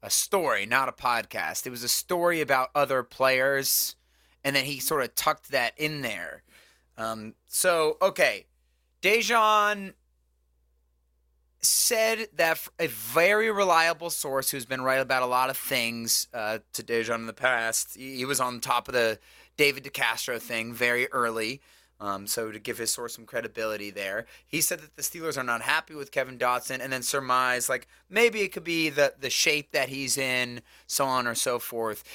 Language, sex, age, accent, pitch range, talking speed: English, male, 30-49, American, 115-155 Hz, 175 wpm